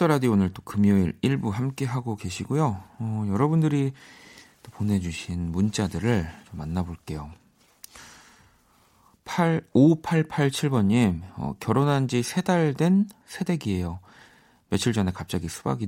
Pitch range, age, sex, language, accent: 85-120 Hz, 40-59, male, Korean, native